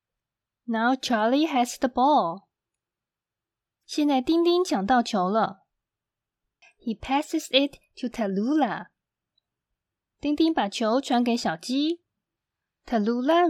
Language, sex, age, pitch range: Chinese, female, 20-39, 220-305 Hz